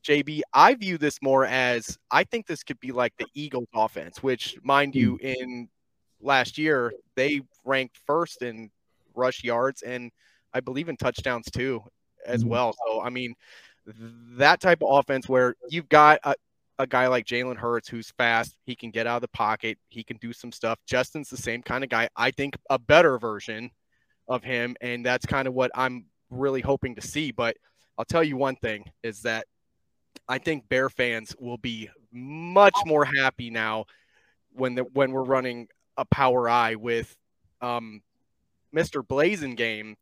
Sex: male